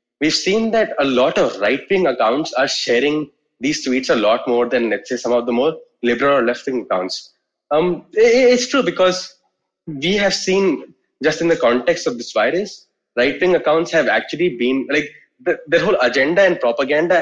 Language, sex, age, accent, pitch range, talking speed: English, male, 20-39, Indian, 130-185 Hz, 180 wpm